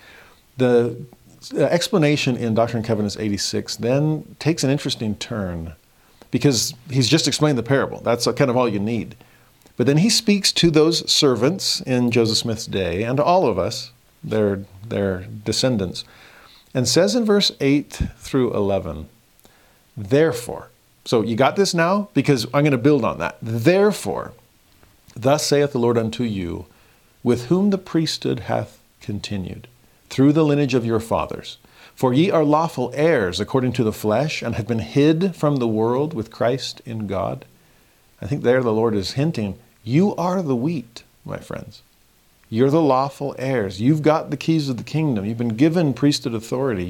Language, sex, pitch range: English, male, 105-145 Hz